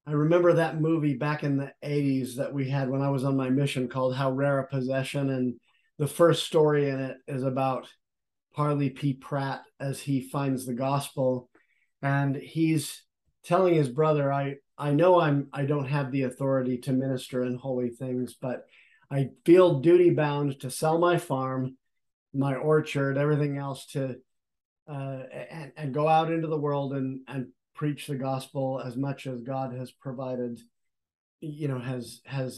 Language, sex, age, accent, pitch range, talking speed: English, male, 50-69, American, 130-150 Hz, 175 wpm